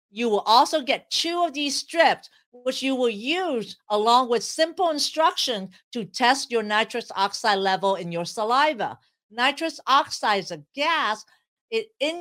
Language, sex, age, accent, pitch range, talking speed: English, female, 50-69, American, 200-280 Hz, 150 wpm